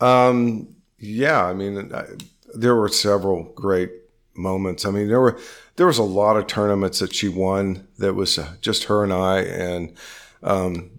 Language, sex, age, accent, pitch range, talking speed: English, male, 50-69, American, 95-110 Hz, 165 wpm